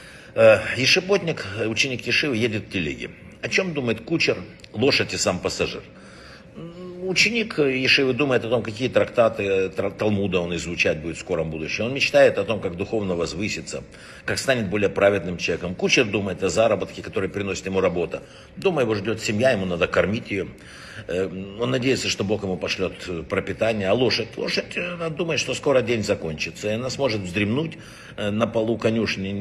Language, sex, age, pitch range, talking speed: Russian, male, 60-79, 95-130 Hz, 160 wpm